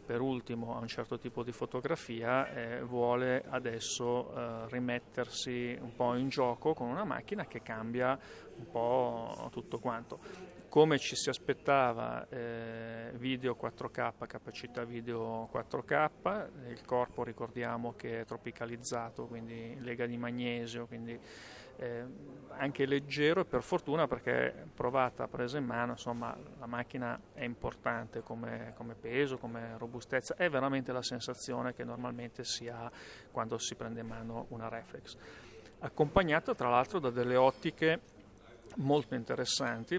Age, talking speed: 40-59, 135 wpm